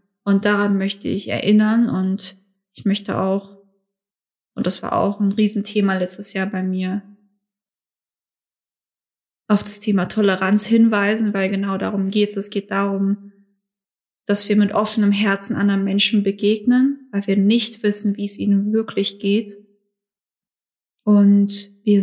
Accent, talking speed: German, 140 wpm